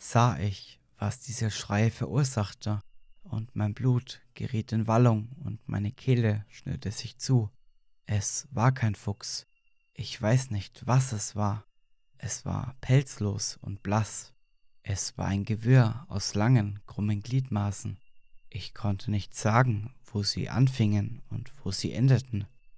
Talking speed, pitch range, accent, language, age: 135 wpm, 105-125 Hz, German, German, 20-39